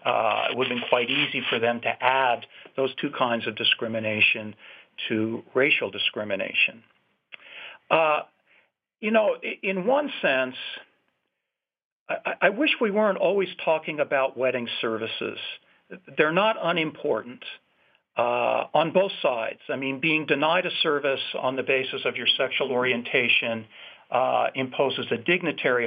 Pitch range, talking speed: 120-165 Hz, 135 wpm